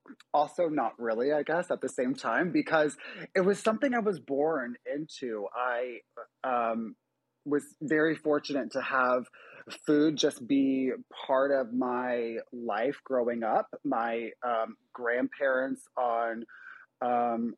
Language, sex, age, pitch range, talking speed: English, male, 20-39, 115-140 Hz, 130 wpm